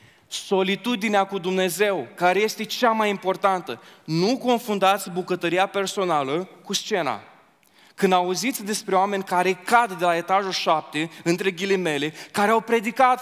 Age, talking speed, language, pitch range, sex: 20-39, 130 wpm, Romanian, 185-235 Hz, male